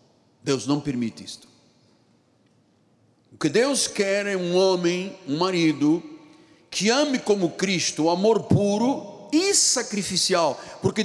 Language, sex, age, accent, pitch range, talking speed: Portuguese, male, 60-79, Brazilian, 155-205 Hz, 125 wpm